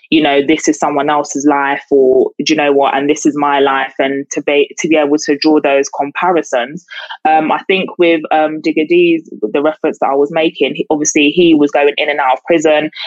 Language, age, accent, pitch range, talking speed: English, 20-39, British, 140-165 Hz, 225 wpm